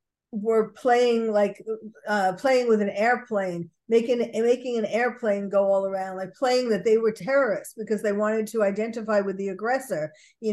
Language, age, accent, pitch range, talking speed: English, 50-69, American, 210-280 Hz, 170 wpm